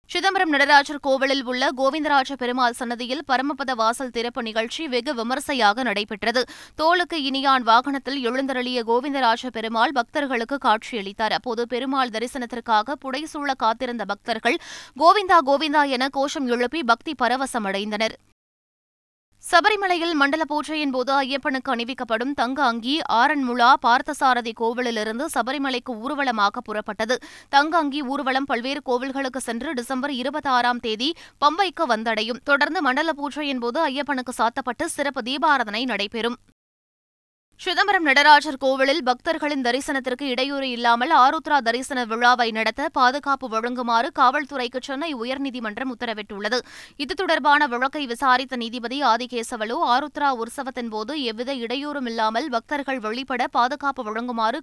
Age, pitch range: 20-39, 235-285 Hz